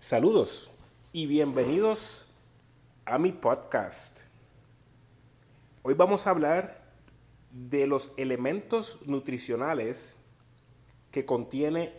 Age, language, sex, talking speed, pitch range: 30-49, English, male, 80 wpm, 130-175 Hz